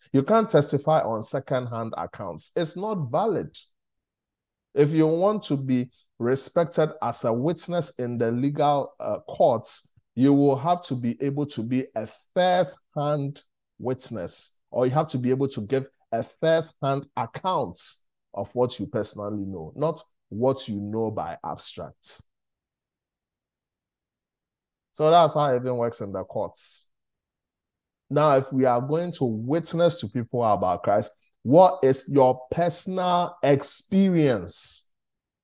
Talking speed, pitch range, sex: 135 wpm, 115-155 Hz, male